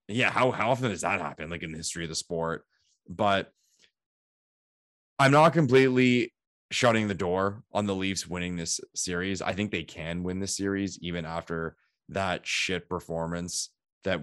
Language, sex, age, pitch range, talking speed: English, male, 20-39, 90-115 Hz, 170 wpm